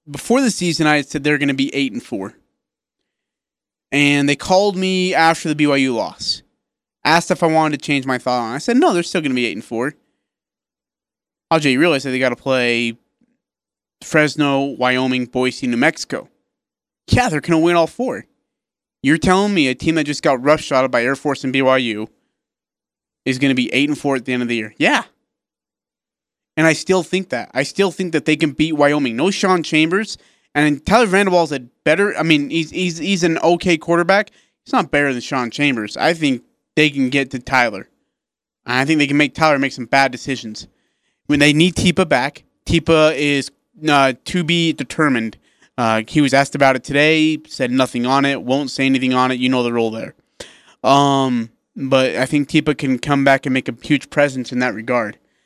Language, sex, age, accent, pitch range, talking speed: English, male, 30-49, American, 130-165 Hz, 210 wpm